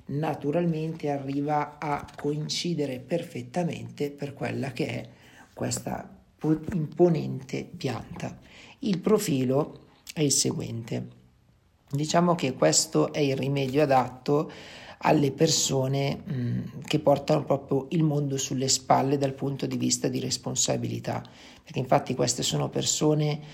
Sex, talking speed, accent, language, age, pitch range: male, 110 wpm, native, Italian, 50-69, 130-160 Hz